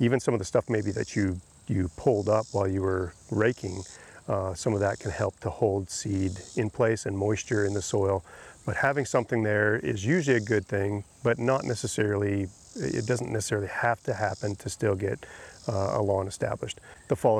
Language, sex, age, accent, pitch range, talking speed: English, male, 40-59, American, 100-115 Hz, 200 wpm